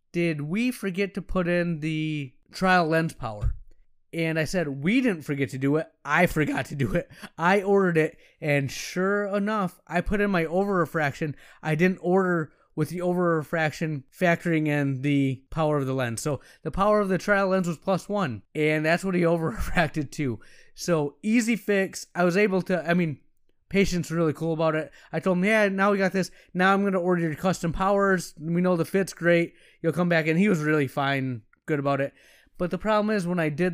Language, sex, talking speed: English, male, 215 wpm